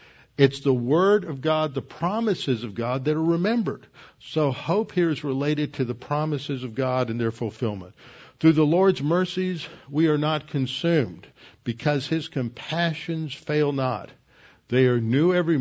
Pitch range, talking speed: 130-165 Hz, 160 wpm